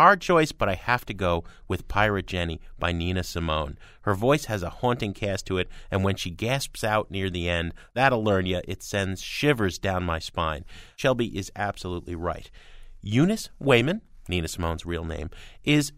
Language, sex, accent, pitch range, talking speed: English, male, American, 90-125 Hz, 185 wpm